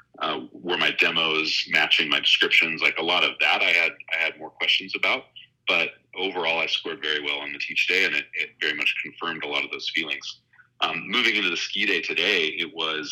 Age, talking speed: 30-49, 225 wpm